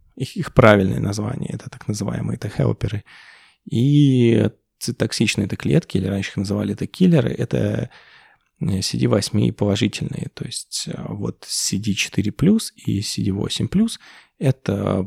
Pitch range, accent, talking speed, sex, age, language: 100-120 Hz, native, 125 wpm, male, 20-39, Russian